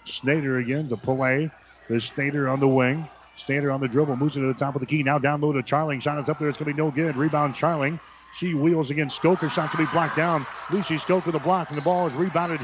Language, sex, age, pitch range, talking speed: English, male, 50-69, 130-155 Hz, 255 wpm